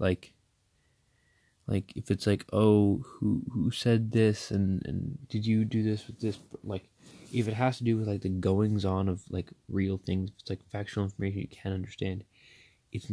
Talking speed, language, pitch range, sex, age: 190 wpm, English, 95-115 Hz, male, 20-39